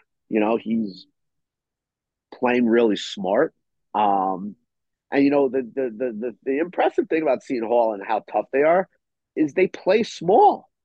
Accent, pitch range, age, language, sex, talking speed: American, 115-160 Hz, 30-49, English, male, 160 wpm